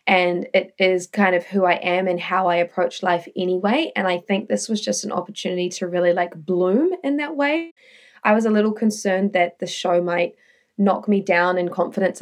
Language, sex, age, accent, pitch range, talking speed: English, female, 20-39, Australian, 180-215 Hz, 210 wpm